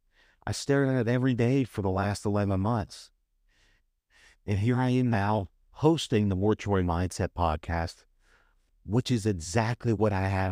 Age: 50-69